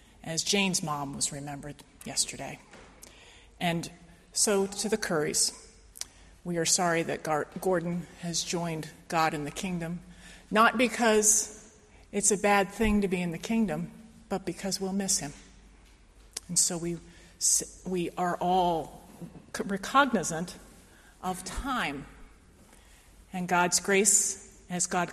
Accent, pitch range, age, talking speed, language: American, 170-215 Hz, 40-59, 125 wpm, English